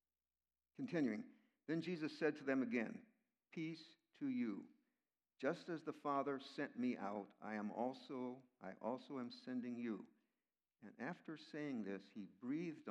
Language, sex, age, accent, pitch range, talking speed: English, male, 60-79, American, 105-150 Hz, 145 wpm